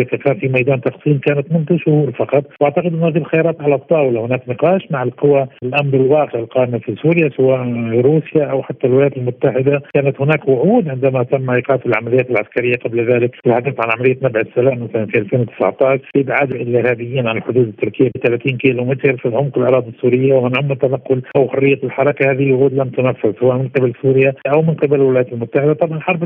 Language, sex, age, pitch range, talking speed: Arabic, male, 50-69, 130-155 Hz, 185 wpm